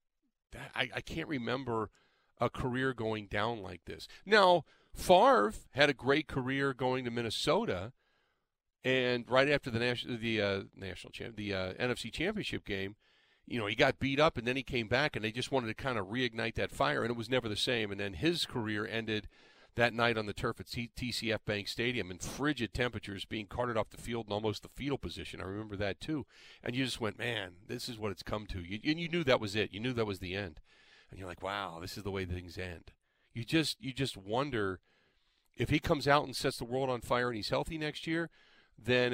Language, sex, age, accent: English, male, 40-59, American